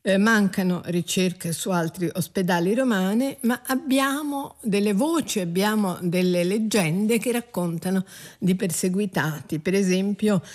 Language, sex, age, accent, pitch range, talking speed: Italian, female, 50-69, native, 175-215 Hz, 110 wpm